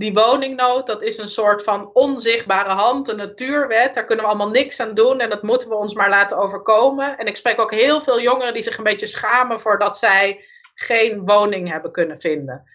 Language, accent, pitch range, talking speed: Dutch, Dutch, 205-255 Hz, 210 wpm